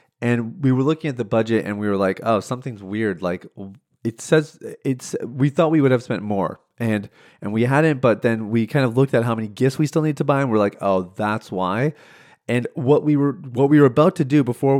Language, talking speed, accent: English, 245 wpm, American